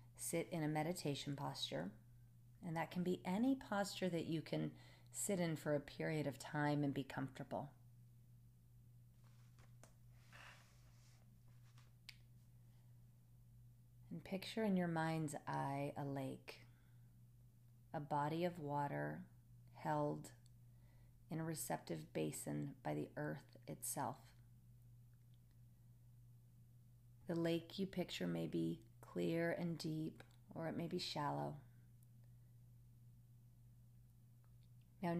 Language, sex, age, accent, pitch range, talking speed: English, female, 40-59, American, 120-145 Hz, 100 wpm